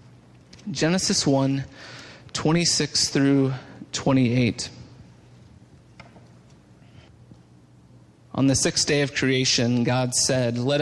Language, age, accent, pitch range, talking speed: English, 30-49, American, 130-155 Hz, 80 wpm